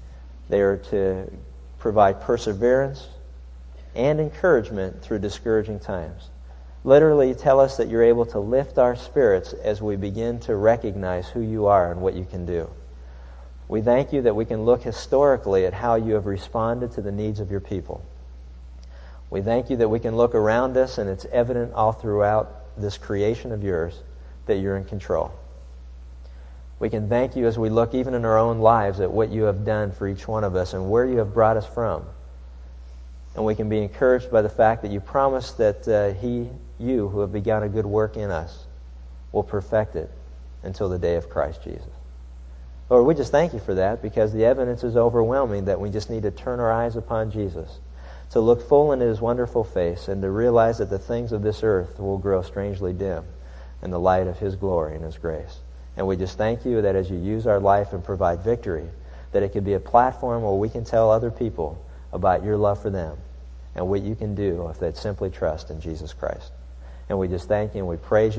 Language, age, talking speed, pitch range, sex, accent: English, 50-69, 210 wpm, 75-115 Hz, male, American